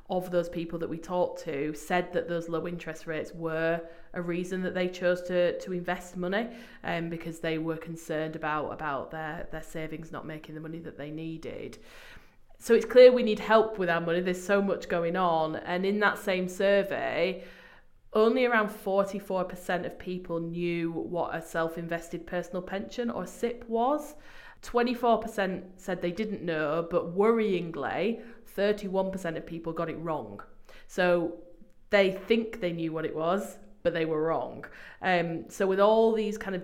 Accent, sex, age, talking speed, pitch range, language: British, female, 30-49, 175 wpm, 165-195 Hz, English